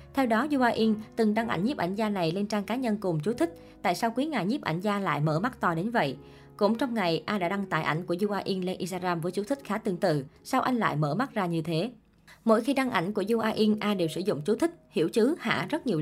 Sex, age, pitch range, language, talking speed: male, 20-39, 170-225 Hz, Vietnamese, 285 wpm